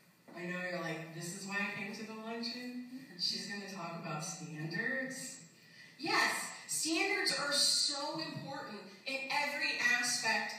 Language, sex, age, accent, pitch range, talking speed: English, female, 30-49, American, 185-275 Hz, 145 wpm